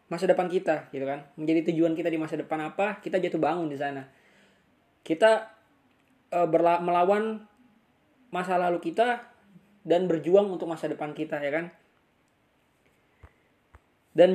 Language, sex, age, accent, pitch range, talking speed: Indonesian, male, 20-39, native, 155-195 Hz, 140 wpm